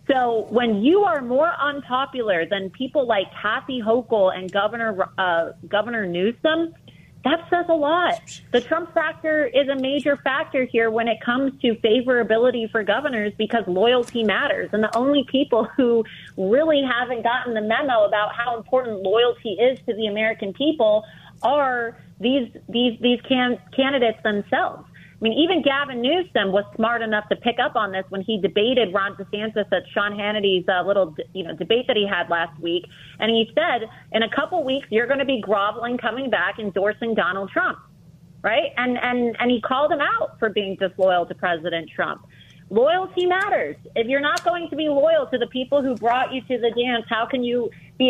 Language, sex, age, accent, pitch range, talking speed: English, female, 30-49, American, 210-270 Hz, 185 wpm